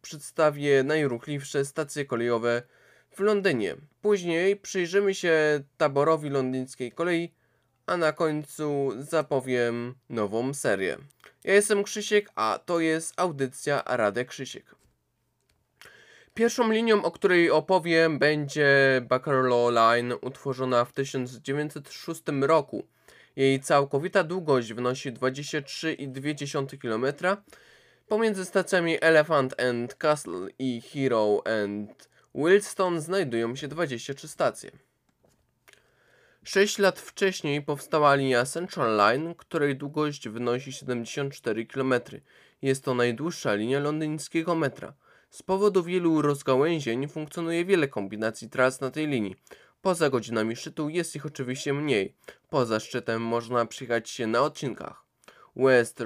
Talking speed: 110 wpm